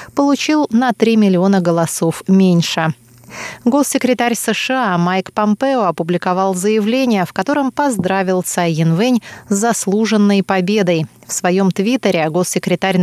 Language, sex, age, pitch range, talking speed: Russian, female, 20-39, 180-235 Hz, 110 wpm